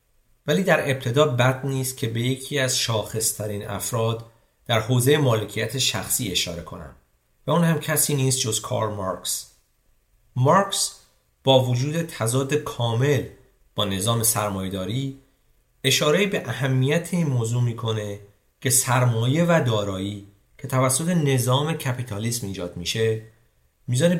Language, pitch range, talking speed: Persian, 105-135 Hz, 125 wpm